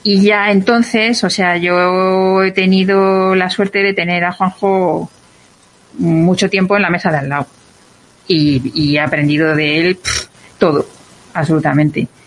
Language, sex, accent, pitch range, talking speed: Spanish, female, Spanish, 160-215 Hz, 145 wpm